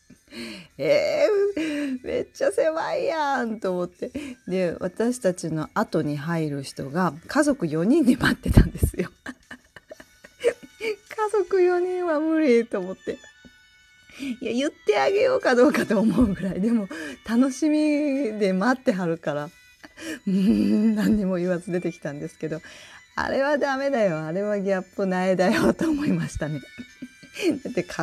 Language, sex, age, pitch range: Japanese, female, 40-59, 170-285 Hz